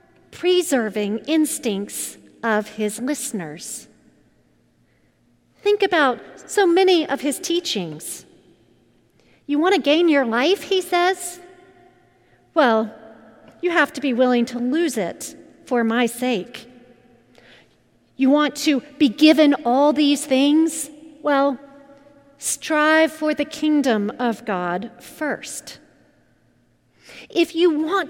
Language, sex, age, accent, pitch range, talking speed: English, female, 40-59, American, 230-320 Hz, 110 wpm